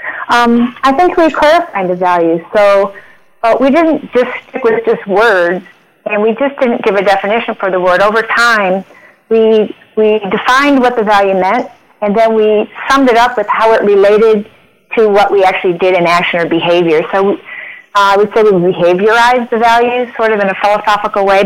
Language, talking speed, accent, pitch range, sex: English, 190 wpm, American, 190-235 Hz, female